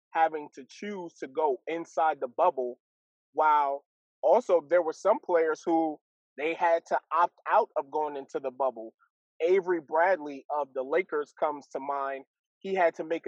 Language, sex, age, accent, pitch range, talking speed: English, male, 20-39, American, 140-175 Hz, 165 wpm